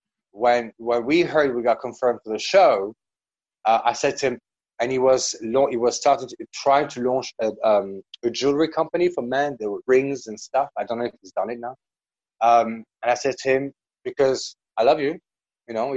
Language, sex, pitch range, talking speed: English, male, 120-155 Hz, 210 wpm